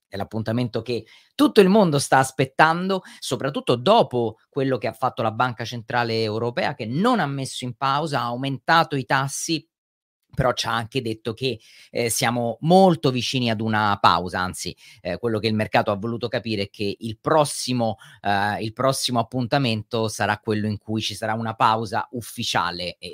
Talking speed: 175 wpm